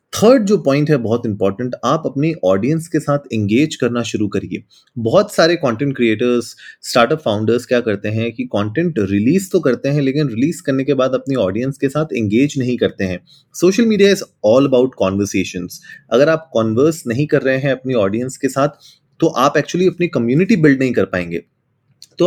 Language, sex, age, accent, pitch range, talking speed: Hindi, male, 30-49, native, 115-155 Hz, 190 wpm